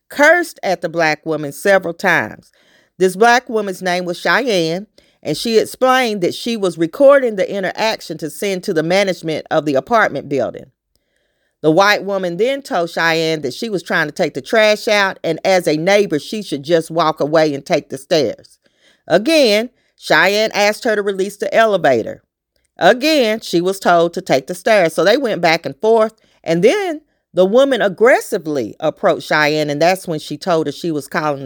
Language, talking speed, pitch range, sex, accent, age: English, 185 wpm, 165-220 Hz, female, American, 40-59